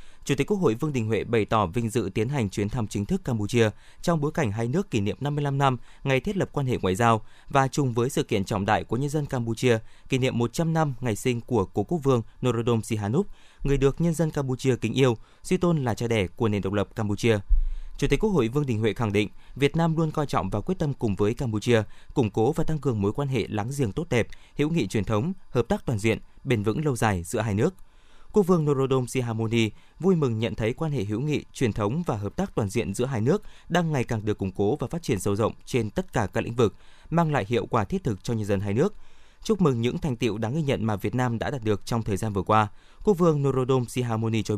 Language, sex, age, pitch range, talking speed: Vietnamese, male, 20-39, 110-150 Hz, 260 wpm